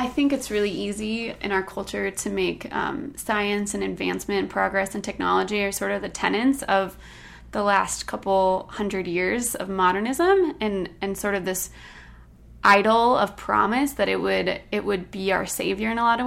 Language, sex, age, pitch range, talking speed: English, female, 20-39, 190-220 Hz, 185 wpm